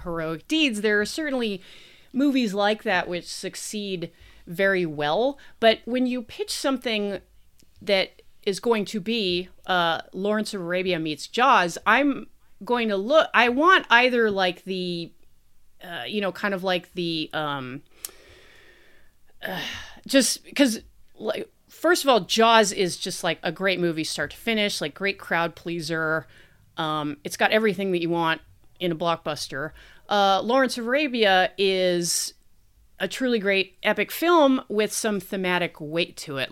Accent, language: American, English